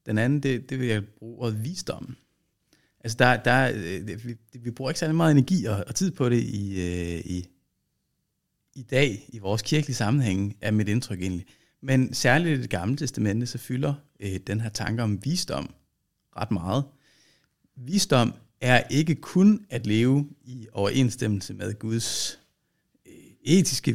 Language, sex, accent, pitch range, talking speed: Danish, male, native, 110-145 Hz, 165 wpm